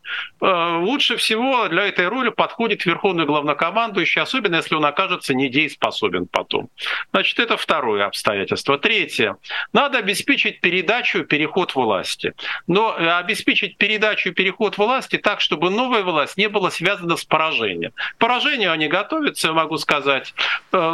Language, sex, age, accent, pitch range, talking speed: Russian, male, 50-69, native, 155-210 Hz, 125 wpm